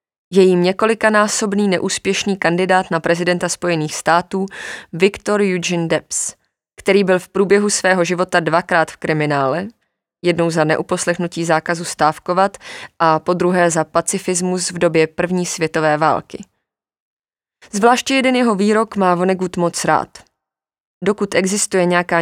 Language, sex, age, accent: Czech, female, 20-39, native